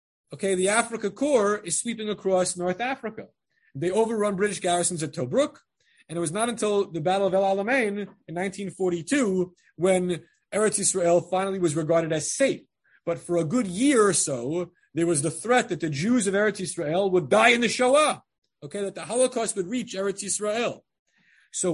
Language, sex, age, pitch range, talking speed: English, male, 30-49, 170-215 Hz, 180 wpm